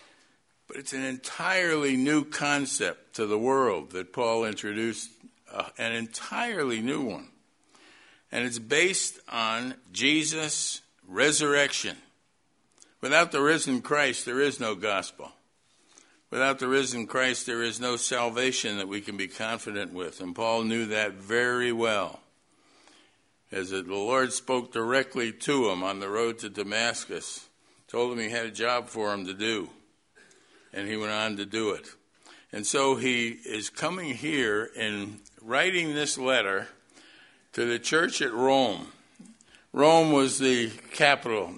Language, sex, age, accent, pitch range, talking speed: English, male, 60-79, American, 105-130 Hz, 140 wpm